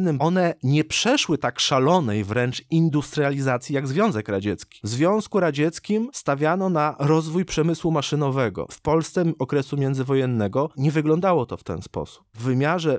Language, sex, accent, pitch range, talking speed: Polish, male, native, 130-160 Hz, 145 wpm